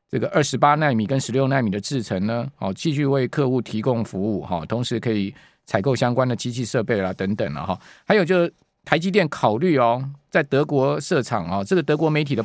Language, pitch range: Chinese, 120-155 Hz